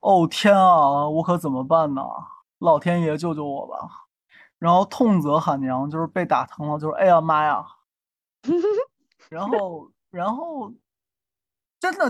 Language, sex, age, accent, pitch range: Chinese, male, 20-39, native, 155-200 Hz